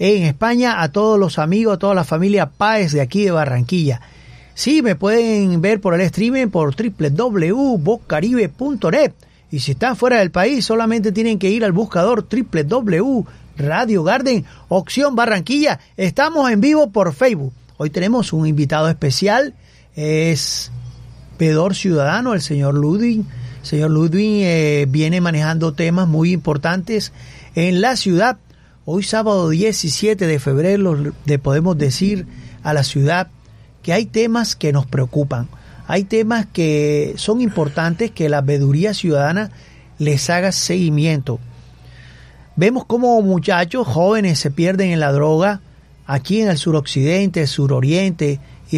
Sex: male